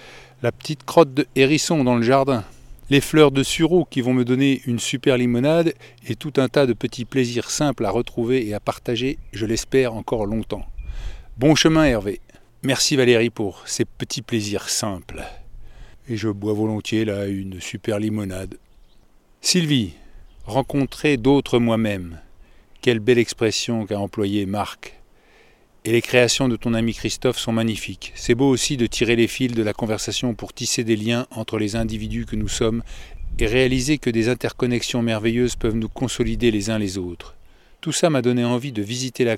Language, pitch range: French, 105-130 Hz